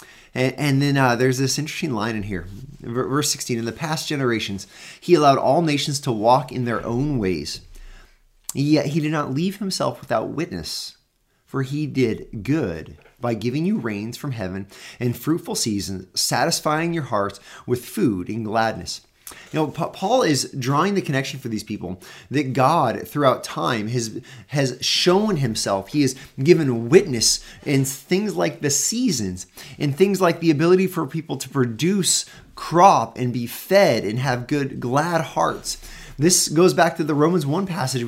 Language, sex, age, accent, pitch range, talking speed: English, male, 30-49, American, 110-150 Hz, 165 wpm